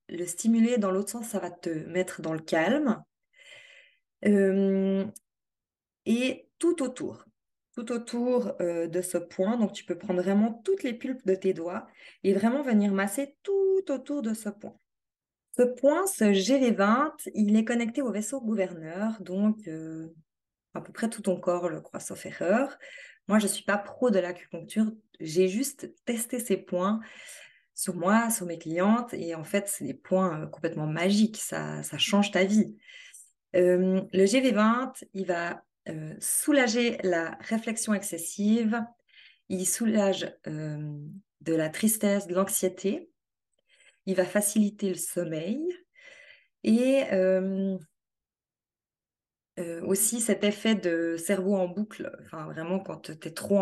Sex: female